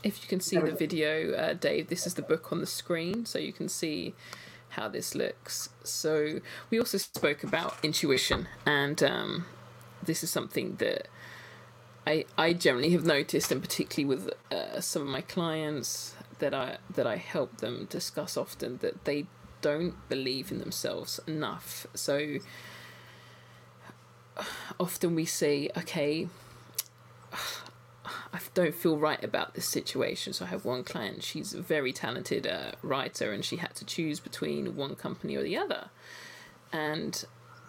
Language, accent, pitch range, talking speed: English, British, 150-185 Hz, 155 wpm